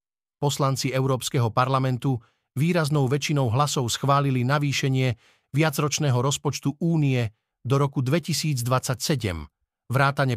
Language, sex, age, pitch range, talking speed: Slovak, male, 50-69, 115-145 Hz, 85 wpm